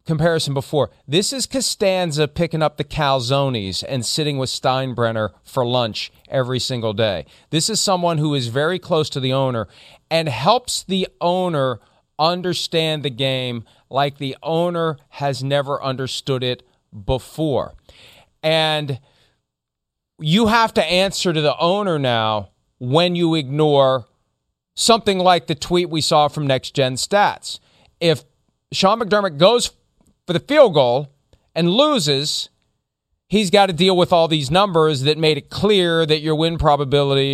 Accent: American